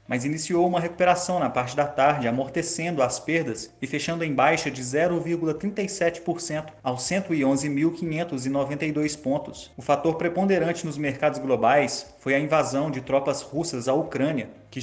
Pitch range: 135-160 Hz